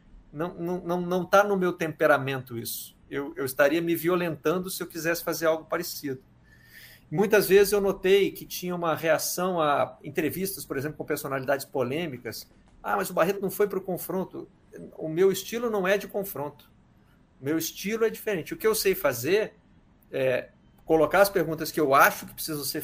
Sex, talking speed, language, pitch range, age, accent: male, 185 wpm, Portuguese, 140-195 Hz, 50-69, Brazilian